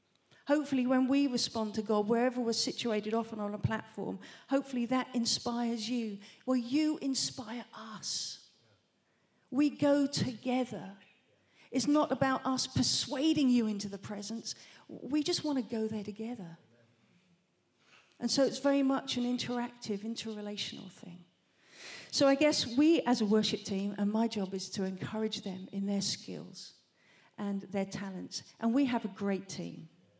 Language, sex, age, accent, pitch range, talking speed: English, female, 40-59, British, 195-240 Hz, 150 wpm